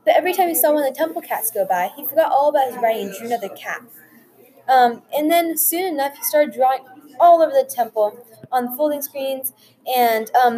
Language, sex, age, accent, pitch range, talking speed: English, female, 10-29, American, 235-300 Hz, 225 wpm